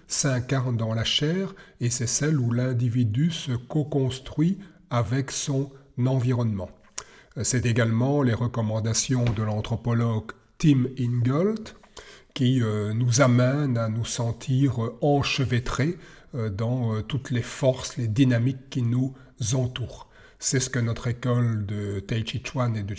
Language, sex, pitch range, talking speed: French, male, 115-135 Hz, 130 wpm